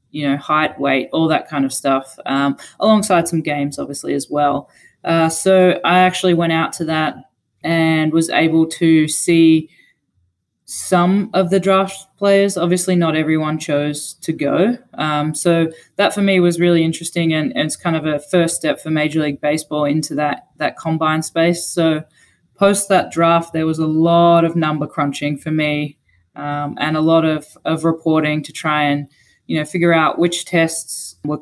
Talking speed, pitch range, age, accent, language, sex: 180 wpm, 150-170 Hz, 20-39, Australian, English, female